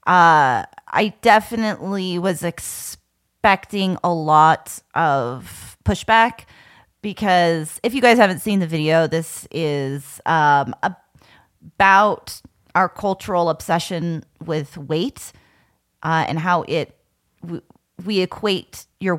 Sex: female